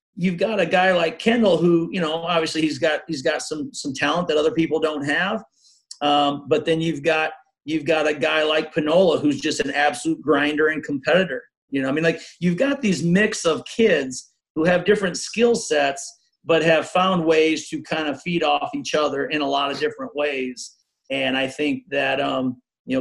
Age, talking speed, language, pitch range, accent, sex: 40-59, 205 wpm, English, 140-180 Hz, American, male